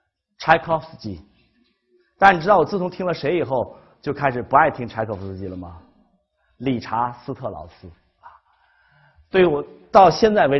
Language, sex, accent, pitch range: Chinese, male, native, 110-175 Hz